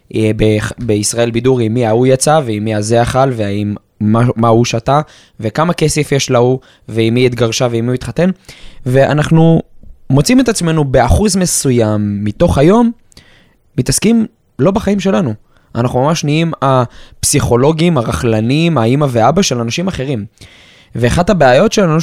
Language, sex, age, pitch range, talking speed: Hebrew, male, 20-39, 115-160 Hz, 135 wpm